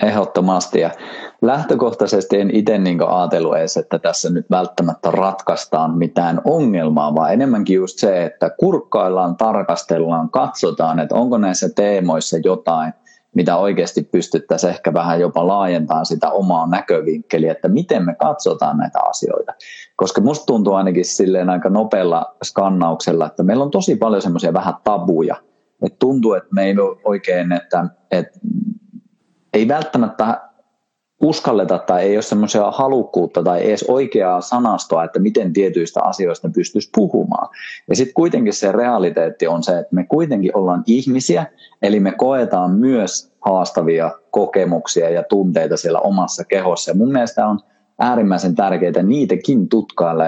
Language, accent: Finnish, native